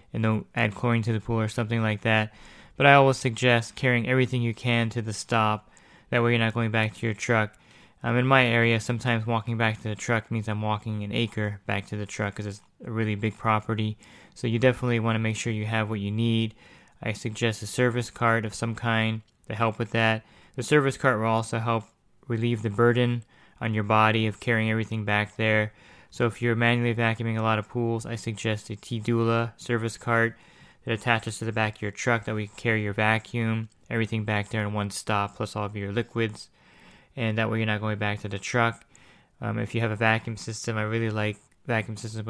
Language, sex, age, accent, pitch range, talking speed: English, male, 20-39, American, 105-115 Hz, 230 wpm